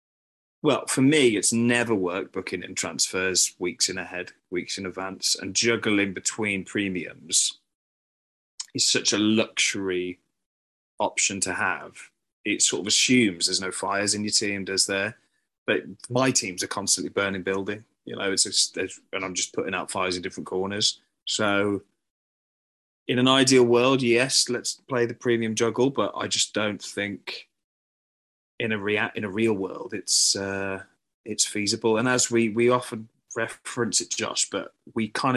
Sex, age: male, 20-39